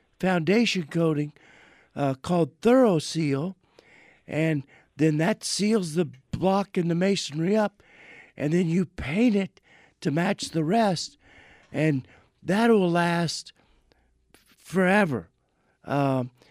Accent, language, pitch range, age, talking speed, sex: American, English, 145-190 Hz, 50-69, 115 wpm, male